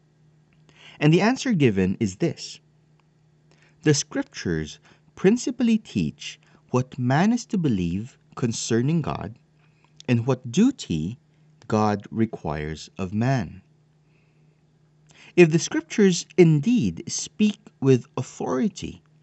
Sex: male